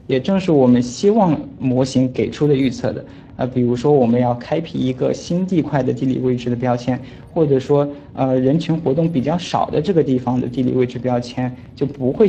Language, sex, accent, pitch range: Chinese, male, native, 125-155 Hz